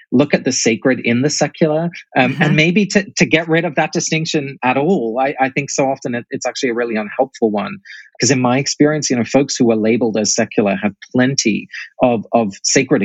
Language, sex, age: English, male, 30-49